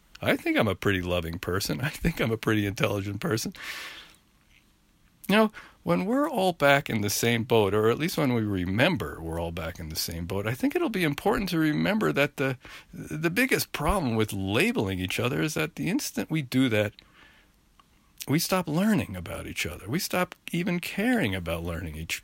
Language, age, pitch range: English, 50-69, 95-140 Hz